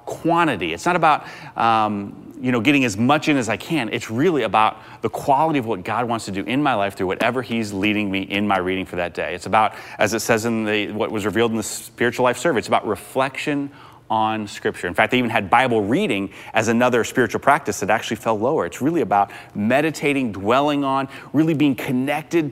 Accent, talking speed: American, 220 wpm